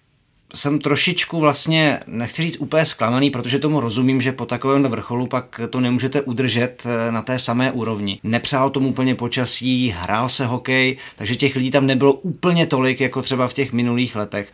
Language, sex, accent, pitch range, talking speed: Czech, male, native, 115-130 Hz, 175 wpm